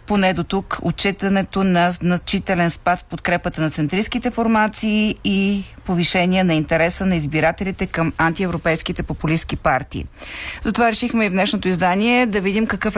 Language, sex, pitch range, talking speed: Bulgarian, female, 165-205 Hz, 145 wpm